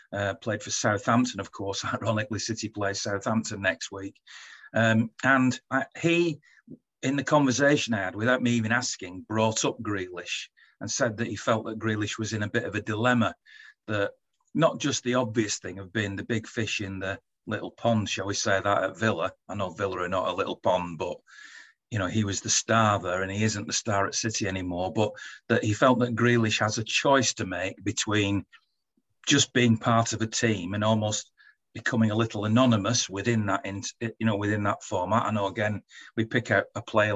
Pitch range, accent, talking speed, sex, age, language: 105-125 Hz, British, 200 wpm, male, 40-59, English